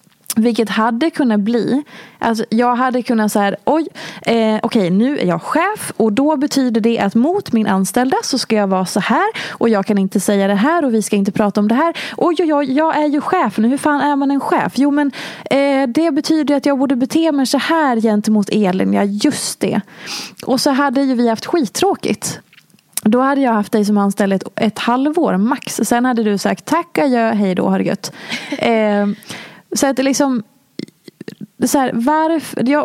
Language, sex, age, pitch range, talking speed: Swedish, female, 20-39, 210-280 Hz, 205 wpm